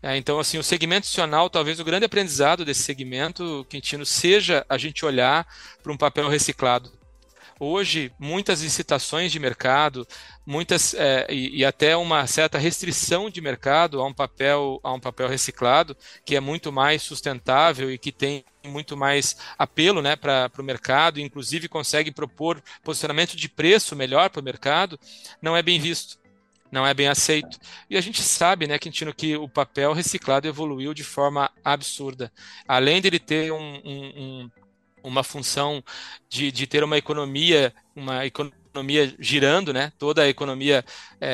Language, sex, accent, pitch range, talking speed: Portuguese, male, Brazilian, 135-155 Hz, 155 wpm